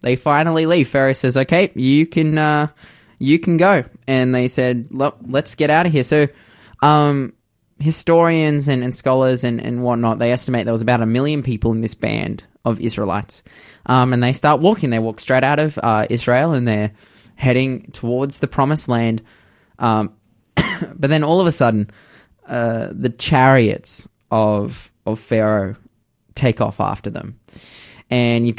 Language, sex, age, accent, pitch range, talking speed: English, male, 20-39, Australian, 110-140 Hz, 170 wpm